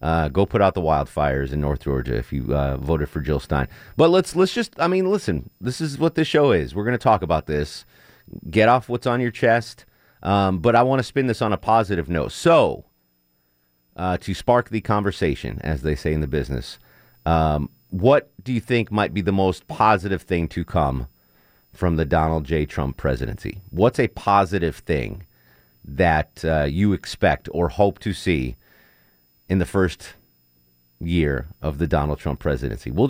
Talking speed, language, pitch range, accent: 190 wpm, English, 75-105 Hz, American